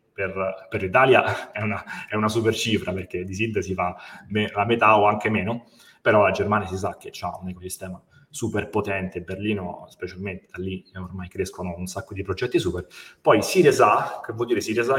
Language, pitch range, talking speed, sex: Italian, 95-115 Hz, 190 wpm, male